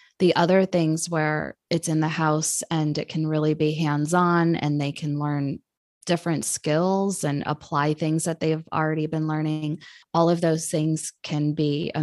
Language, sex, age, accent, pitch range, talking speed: English, female, 20-39, American, 155-175 Hz, 175 wpm